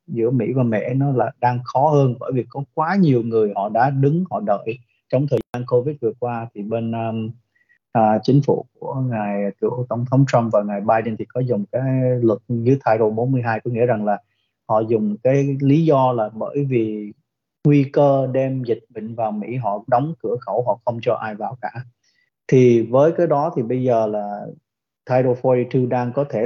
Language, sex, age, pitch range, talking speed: Vietnamese, male, 20-39, 110-135 Hz, 210 wpm